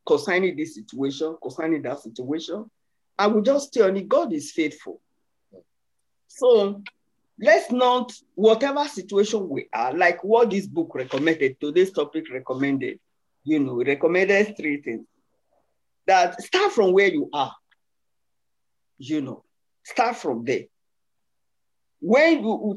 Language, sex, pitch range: English, male, 180-290 Hz